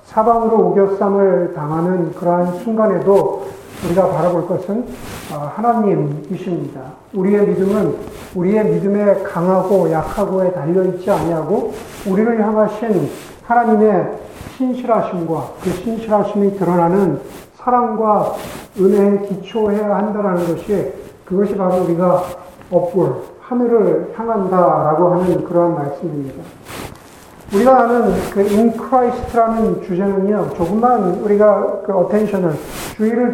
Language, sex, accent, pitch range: Korean, male, native, 180-215 Hz